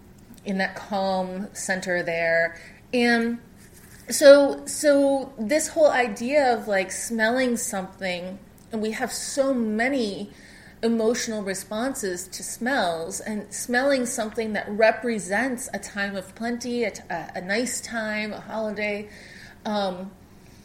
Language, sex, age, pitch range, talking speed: English, female, 30-49, 195-245 Hz, 120 wpm